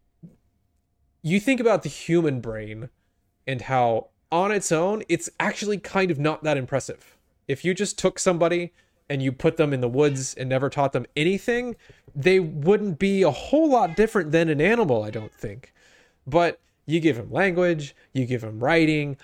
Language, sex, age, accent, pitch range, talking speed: English, male, 20-39, American, 115-170 Hz, 180 wpm